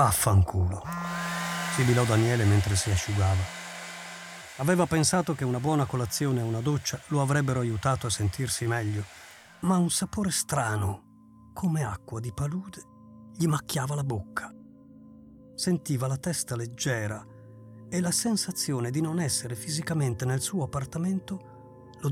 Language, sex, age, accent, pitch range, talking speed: Italian, male, 40-59, native, 110-170 Hz, 130 wpm